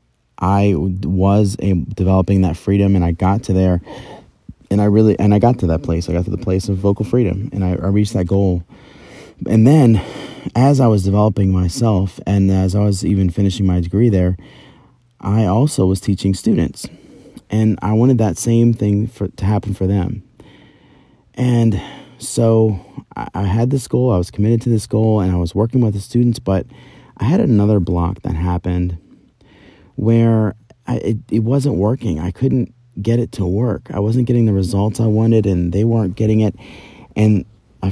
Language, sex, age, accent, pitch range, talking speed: English, male, 30-49, American, 90-110 Hz, 185 wpm